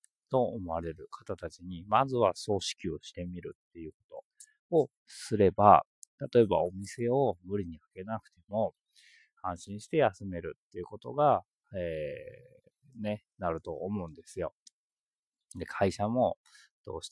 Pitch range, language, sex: 90-135 Hz, Japanese, male